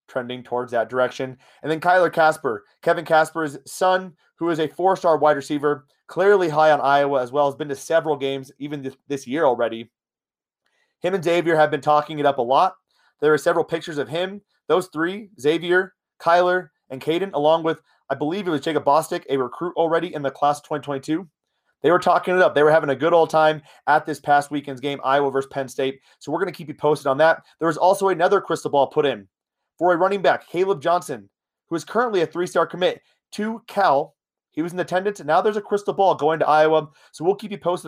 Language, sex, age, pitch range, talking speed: English, male, 30-49, 145-180 Hz, 225 wpm